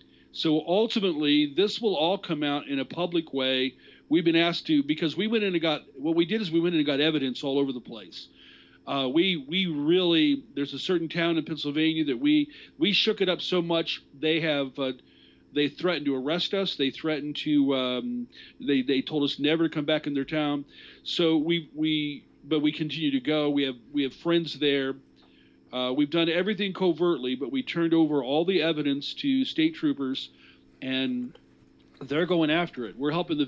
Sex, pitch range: male, 140-180 Hz